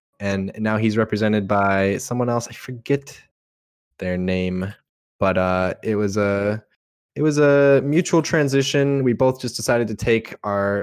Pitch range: 95-120 Hz